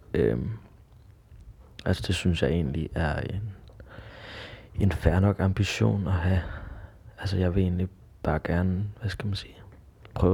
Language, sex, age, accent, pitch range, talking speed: Danish, male, 20-39, native, 95-105 Hz, 140 wpm